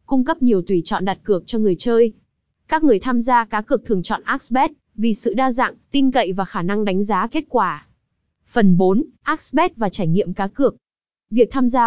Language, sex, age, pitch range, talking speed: Vietnamese, female, 20-39, 200-255 Hz, 215 wpm